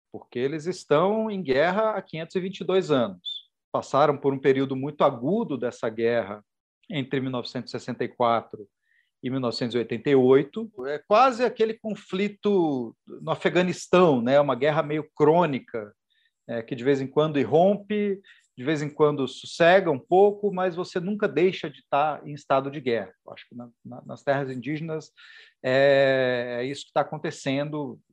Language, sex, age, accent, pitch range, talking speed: Portuguese, male, 40-59, Brazilian, 135-185 Hz, 145 wpm